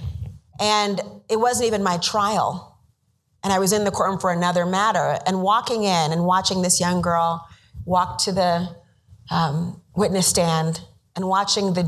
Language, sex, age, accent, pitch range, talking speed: English, female, 30-49, American, 160-200 Hz, 160 wpm